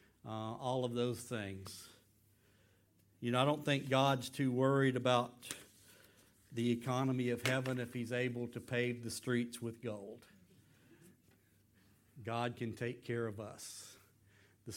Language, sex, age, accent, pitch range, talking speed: English, male, 50-69, American, 110-140 Hz, 140 wpm